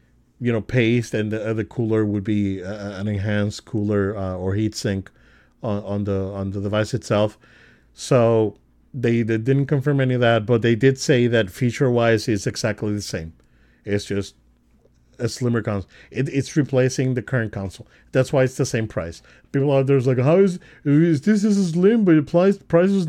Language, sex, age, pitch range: English, male, 40-59, 100-135 Hz